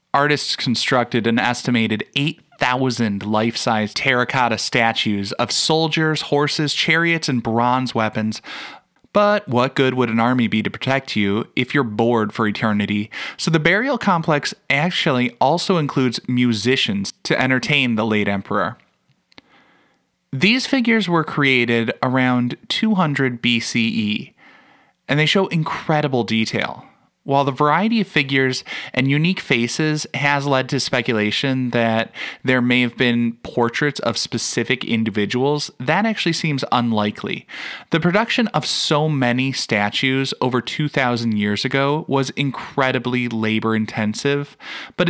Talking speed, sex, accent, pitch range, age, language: 125 wpm, male, American, 120-155 Hz, 20-39, English